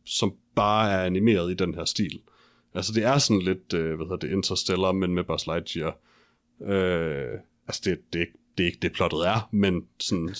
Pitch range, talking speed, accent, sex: 90-115 Hz, 210 wpm, native, male